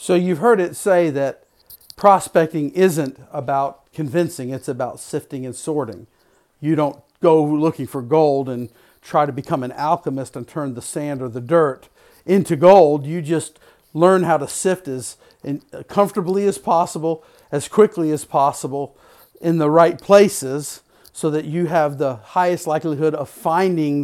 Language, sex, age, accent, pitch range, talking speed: English, male, 50-69, American, 140-175 Hz, 155 wpm